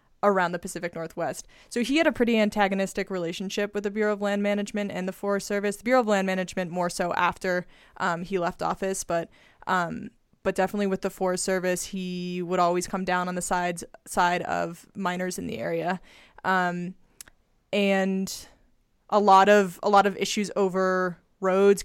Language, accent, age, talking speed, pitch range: English, American, 20-39, 180 wpm, 180-205 Hz